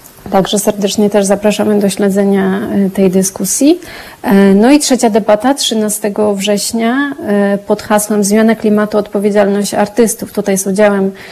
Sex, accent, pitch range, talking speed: female, native, 195-215 Hz, 120 wpm